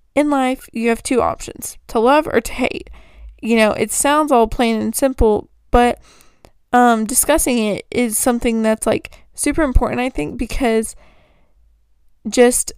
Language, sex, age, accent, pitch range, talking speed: English, female, 20-39, American, 220-260 Hz, 155 wpm